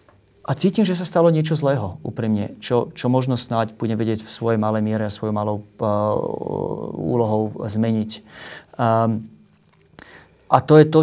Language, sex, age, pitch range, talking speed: Slovak, male, 30-49, 110-135 Hz, 160 wpm